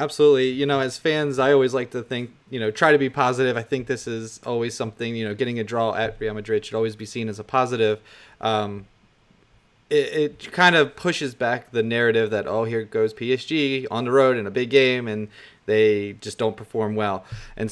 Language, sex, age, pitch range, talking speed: English, male, 30-49, 110-135 Hz, 220 wpm